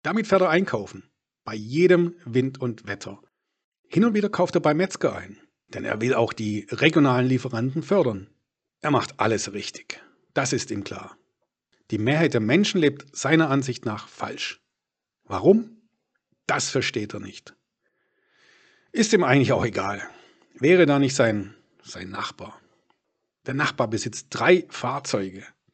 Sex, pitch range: male, 115-180 Hz